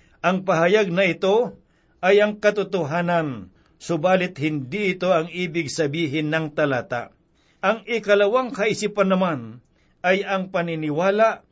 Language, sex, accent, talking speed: Filipino, male, native, 115 wpm